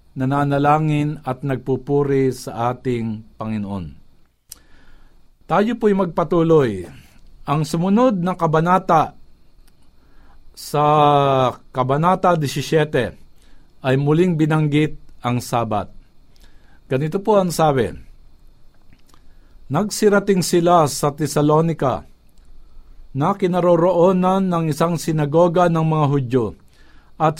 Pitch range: 130-170 Hz